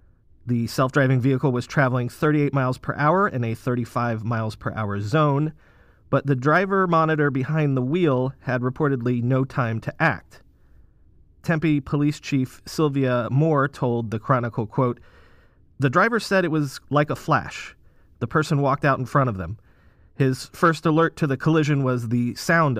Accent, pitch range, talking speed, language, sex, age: American, 115-155 Hz, 165 wpm, English, male, 30-49